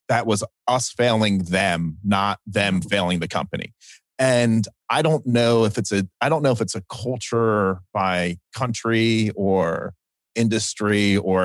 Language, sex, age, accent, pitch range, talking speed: English, male, 30-49, American, 95-115 Hz, 150 wpm